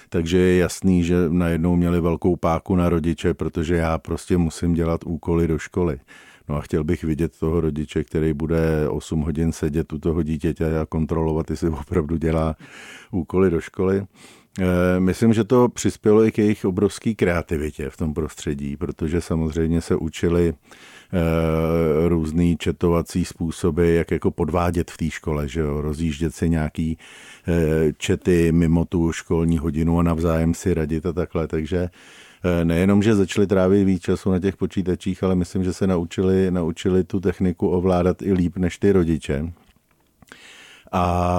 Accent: native